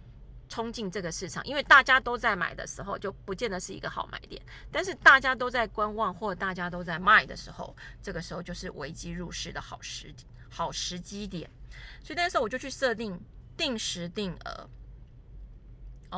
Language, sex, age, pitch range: Chinese, female, 30-49, 175-230 Hz